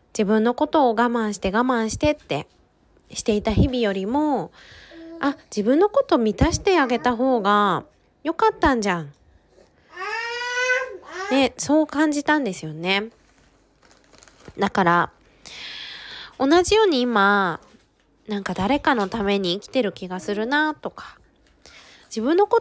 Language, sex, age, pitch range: Japanese, female, 20-39, 195-290 Hz